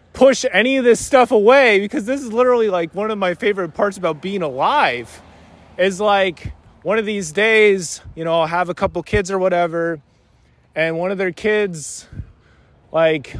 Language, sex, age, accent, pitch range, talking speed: English, male, 20-39, American, 155-200 Hz, 180 wpm